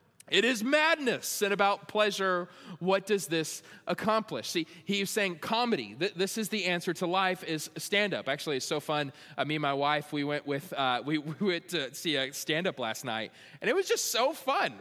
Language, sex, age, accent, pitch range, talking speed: English, male, 20-39, American, 150-210 Hz, 215 wpm